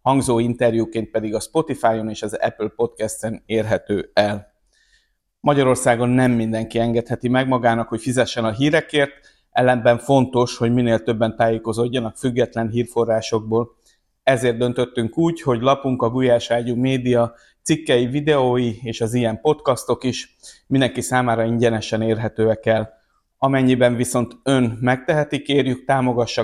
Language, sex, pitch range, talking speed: Hungarian, male, 115-130 Hz, 125 wpm